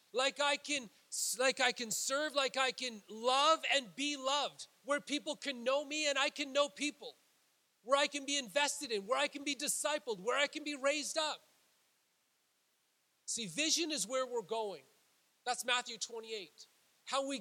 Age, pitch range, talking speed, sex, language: 30-49, 225-285 Hz, 180 wpm, male, English